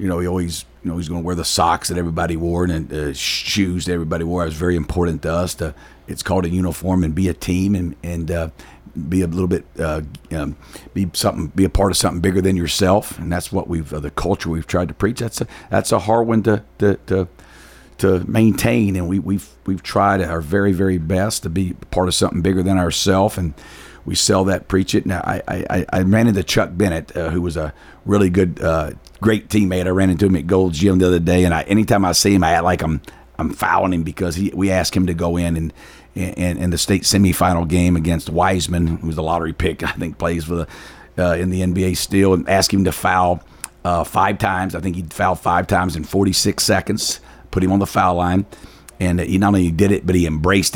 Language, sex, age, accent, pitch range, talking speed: English, male, 50-69, American, 85-100 Hz, 240 wpm